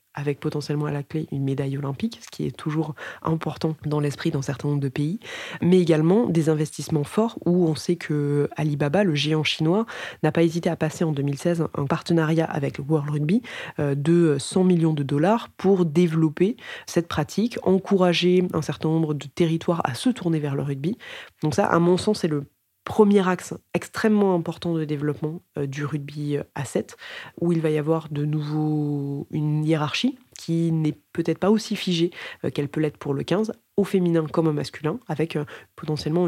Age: 20-39